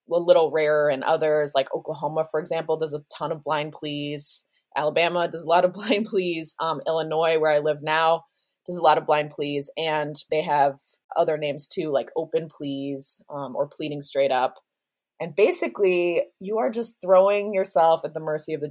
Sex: female